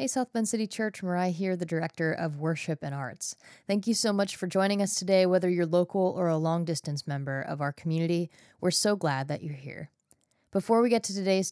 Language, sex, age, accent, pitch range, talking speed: English, female, 20-39, American, 165-205 Hz, 220 wpm